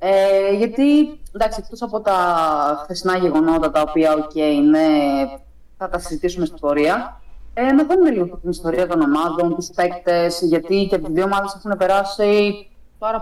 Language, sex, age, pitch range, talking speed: Greek, female, 30-49, 155-200 Hz, 160 wpm